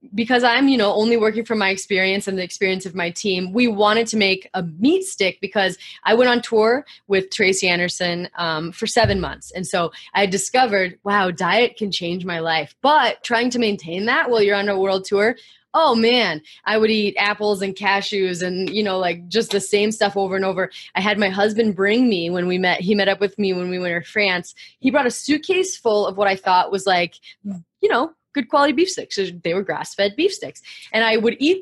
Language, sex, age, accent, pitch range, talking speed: English, female, 20-39, American, 185-245 Hz, 230 wpm